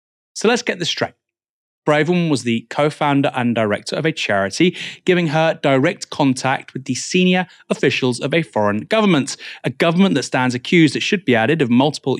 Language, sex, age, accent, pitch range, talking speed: English, male, 30-49, British, 120-170 Hz, 180 wpm